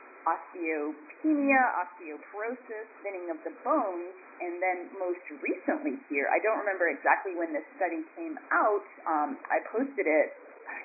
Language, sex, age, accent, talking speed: English, female, 30-49, American, 140 wpm